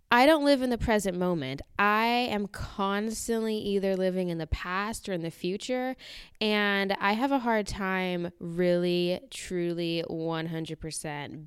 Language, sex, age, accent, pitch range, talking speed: English, female, 10-29, American, 155-195 Hz, 145 wpm